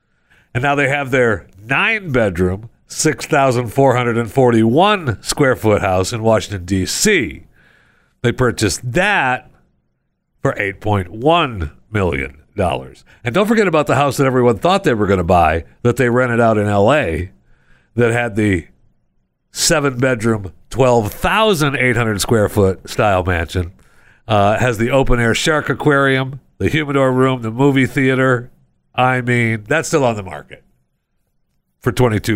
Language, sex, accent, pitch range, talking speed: English, male, American, 90-135 Hz, 120 wpm